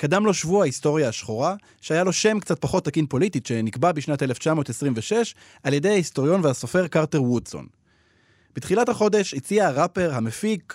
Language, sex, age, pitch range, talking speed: Hebrew, male, 20-39, 125-185 Hz, 145 wpm